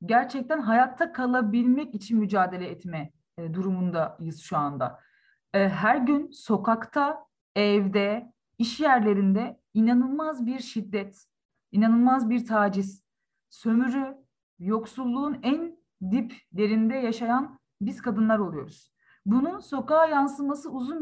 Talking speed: 95 wpm